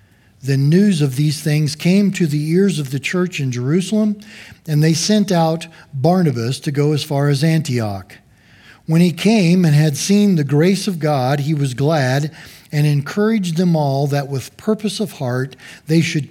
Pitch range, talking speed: 135-175 Hz, 180 wpm